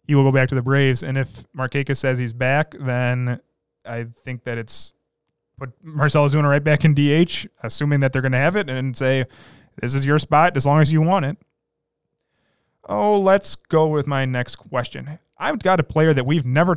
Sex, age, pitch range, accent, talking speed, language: male, 30-49, 135-185 Hz, American, 210 wpm, English